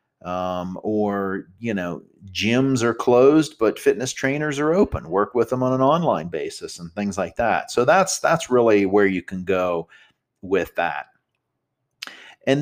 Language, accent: English, American